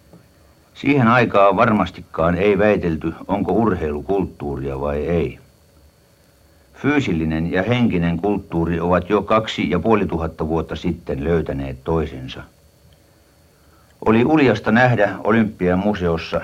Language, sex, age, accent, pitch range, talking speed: Finnish, male, 60-79, native, 80-100 Hz, 100 wpm